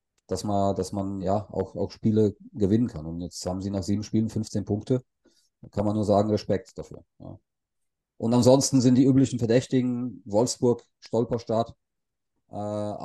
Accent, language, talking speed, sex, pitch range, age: German, German, 165 wpm, male, 100-115 Hz, 40-59